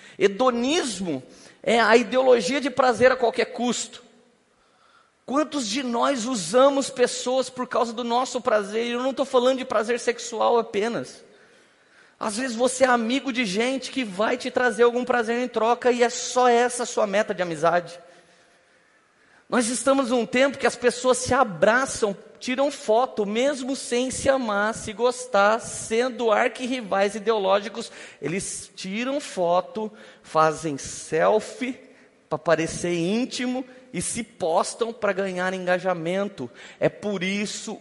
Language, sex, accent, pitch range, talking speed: Portuguese, male, Brazilian, 205-250 Hz, 140 wpm